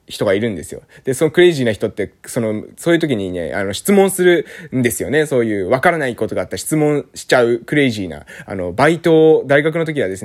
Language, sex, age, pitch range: Japanese, male, 20-39, 115-175 Hz